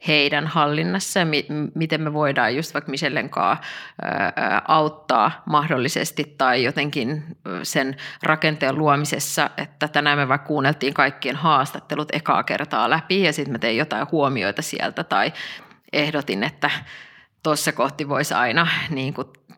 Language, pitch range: Finnish, 145-165 Hz